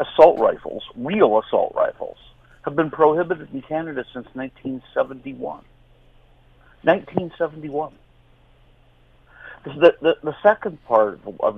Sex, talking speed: male, 100 wpm